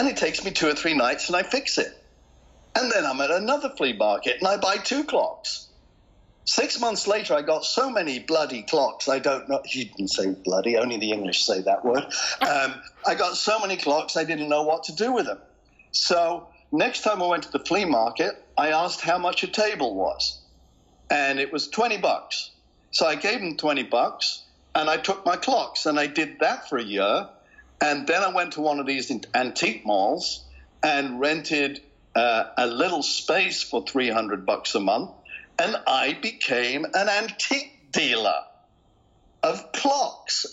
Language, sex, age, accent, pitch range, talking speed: English, male, 60-79, British, 140-215 Hz, 190 wpm